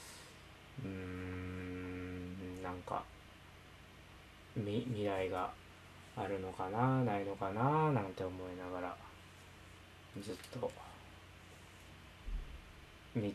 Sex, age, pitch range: male, 20-39, 85-105 Hz